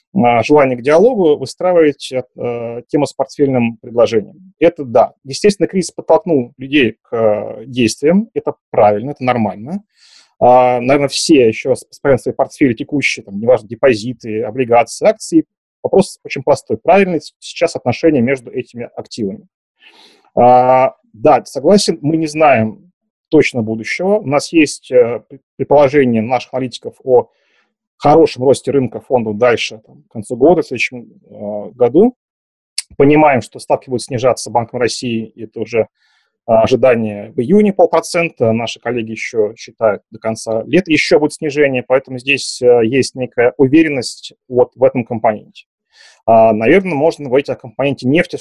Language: Russian